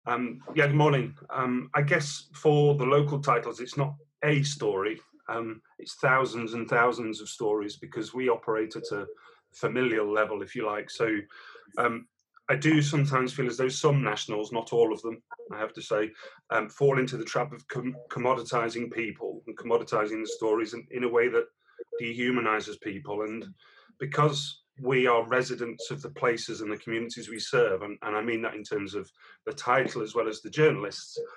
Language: English